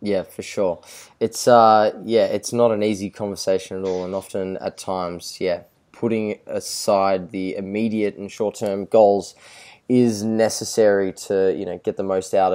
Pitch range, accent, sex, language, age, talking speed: 100-120 Hz, Australian, male, English, 20-39, 165 wpm